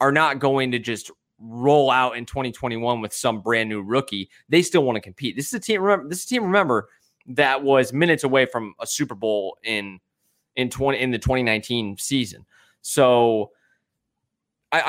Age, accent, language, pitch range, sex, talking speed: 20-39, American, English, 120-160 Hz, male, 185 wpm